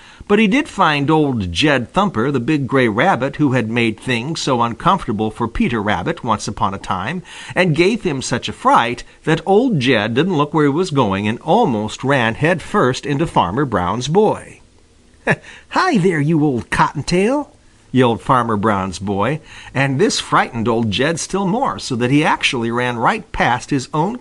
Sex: male